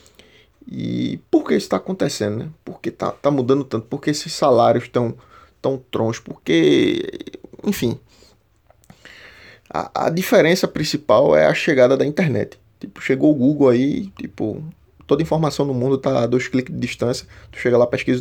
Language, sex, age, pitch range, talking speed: Portuguese, male, 20-39, 115-140 Hz, 165 wpm